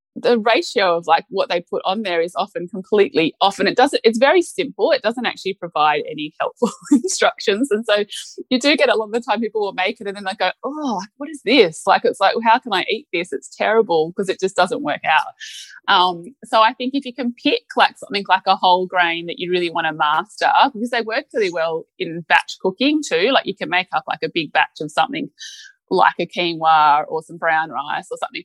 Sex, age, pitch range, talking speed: female, 20-39, 165-260 Hz, 240 wpm